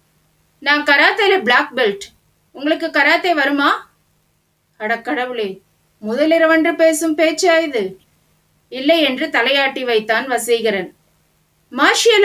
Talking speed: 95 wpm